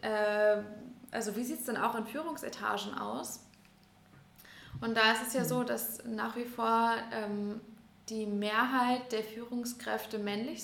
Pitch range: 210-240 Hz